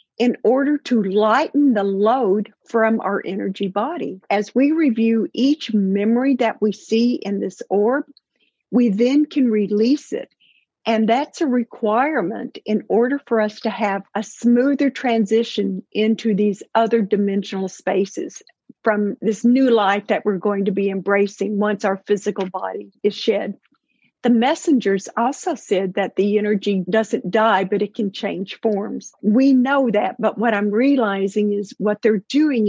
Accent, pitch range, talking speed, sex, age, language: American, 205-245 Hz, 155 wpm, female, 50-69, English